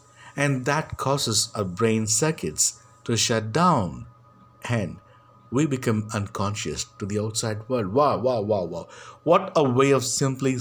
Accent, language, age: Indian, English, 50-69